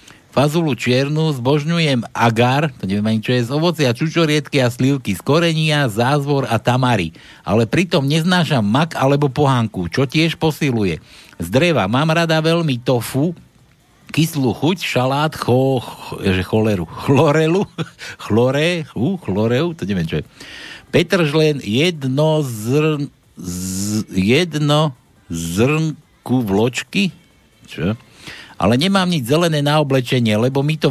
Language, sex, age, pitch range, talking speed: Slovak, male, 60-79, 120-155 Hz, 125 wpm